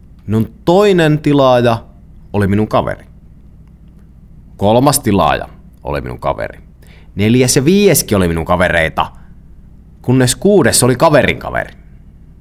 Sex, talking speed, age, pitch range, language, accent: male, 105 wpm, 30-49, 80-125 Hz, Finnish, native